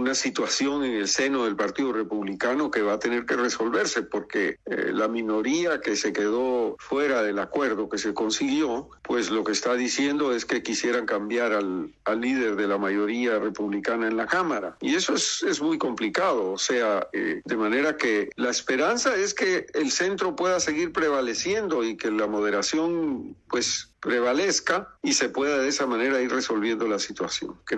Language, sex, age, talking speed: Spanish, male, 50-69, 180 wpm